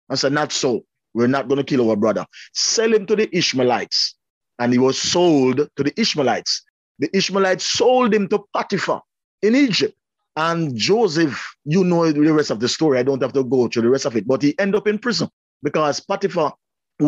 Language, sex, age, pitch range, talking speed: English, male, 30-49, 135-205 Hz, 205 wpm